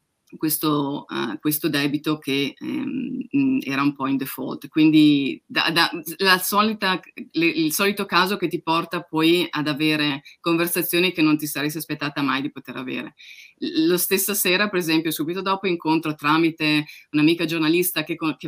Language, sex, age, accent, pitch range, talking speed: Italian, female, 30-49, native, 145-180 Hz, 165 wpm